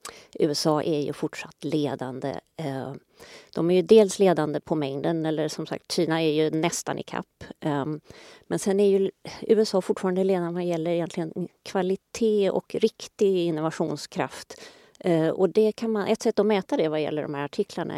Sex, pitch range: female, 160-205 Hz